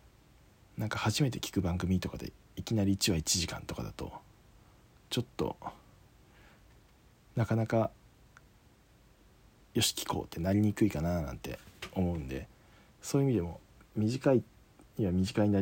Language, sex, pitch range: Japanese, male, 90-115 Hz